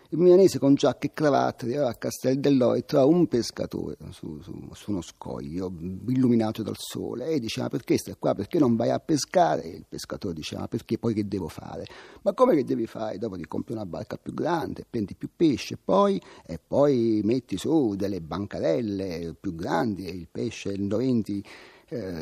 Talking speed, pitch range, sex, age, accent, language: 185 wpm, 110-150 Hz, male, 40-59, native, Italian